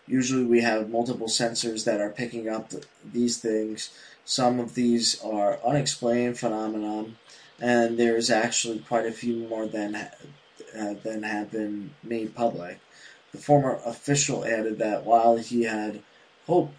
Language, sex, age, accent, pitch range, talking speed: English, male, 20-39, American, 110-120 Hz, 145 wpm